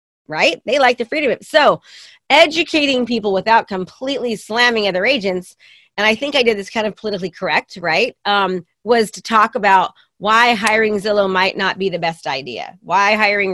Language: English